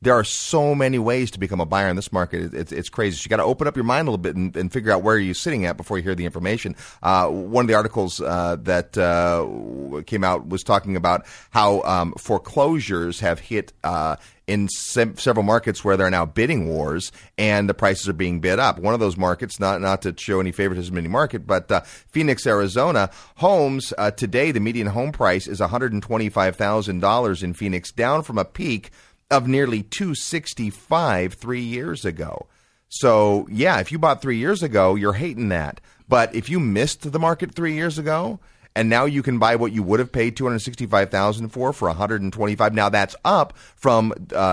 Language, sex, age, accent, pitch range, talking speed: English, male, 30-49, American, 95-125 Hz, 210 wpm